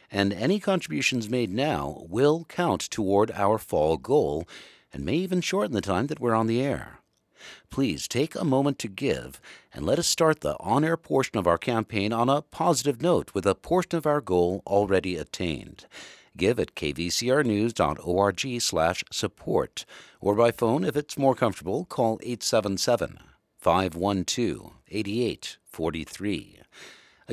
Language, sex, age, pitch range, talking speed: English, male, 60-79, 100-145 Hz, 140 wpm